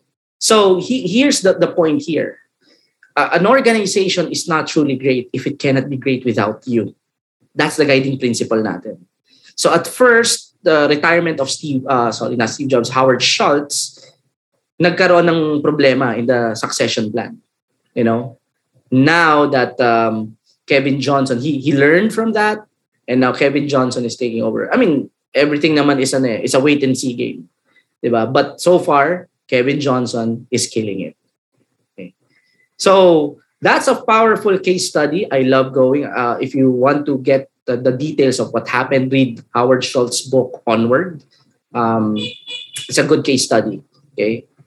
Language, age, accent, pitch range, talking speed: Filipino, 20-39, native, 125-170 Hz, 165 wpm